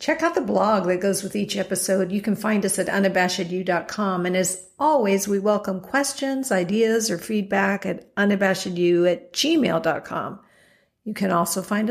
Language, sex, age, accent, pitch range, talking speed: English, female, 50-69, American, 185-225 Hz, 160 wpm